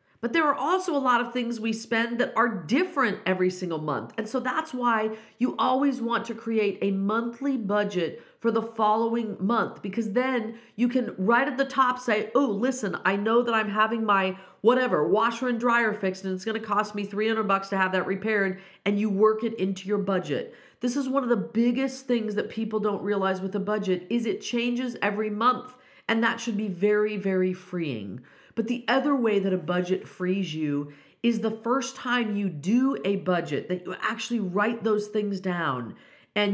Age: 40-59